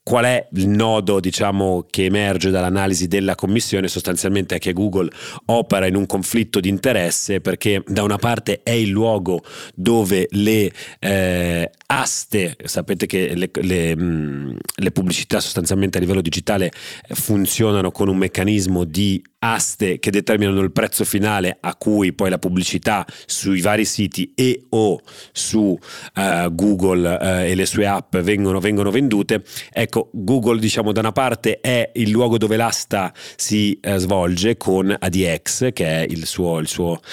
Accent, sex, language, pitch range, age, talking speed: native, male, Italian, 95-110 Hz, 40-59, 155 wpm